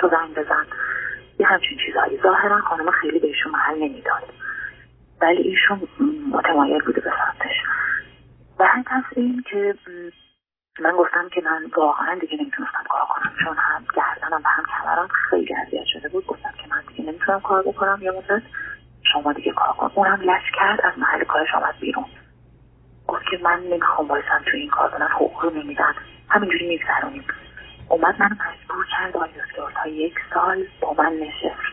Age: 30-49